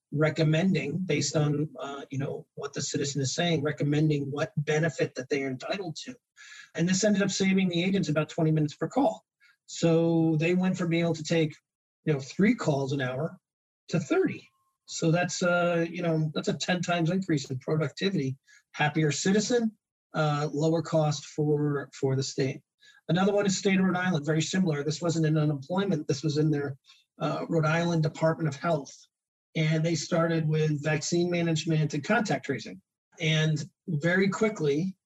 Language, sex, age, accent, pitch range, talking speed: English, male, 40-59, American, 150-175 Hz, 175 wpm